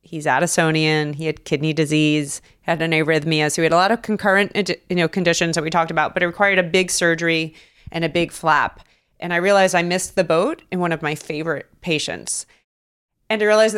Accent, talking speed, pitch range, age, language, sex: American, 215 wpm, 155-195 Hz, 30-49, English, female